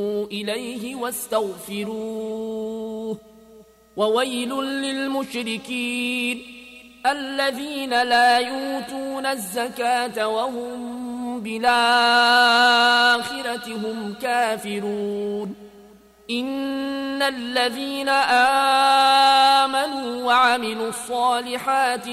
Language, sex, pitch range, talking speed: Arabic, male, 210-245 Hz, 45 wpm